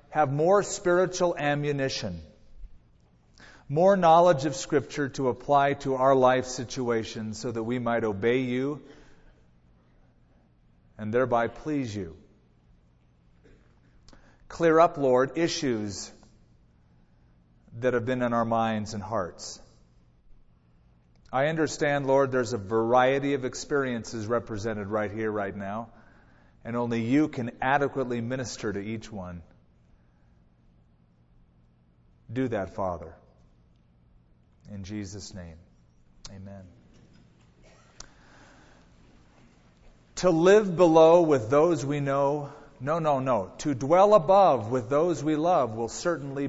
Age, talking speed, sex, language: 40-59, 110 wpm, male, English